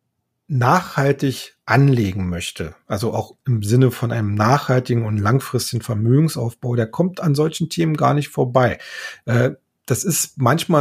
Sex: male